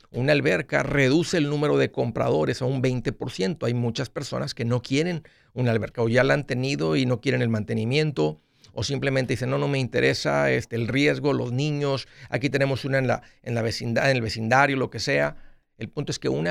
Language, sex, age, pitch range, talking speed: Spanish, male, 50-69, 125-155 Hz, 200 wpm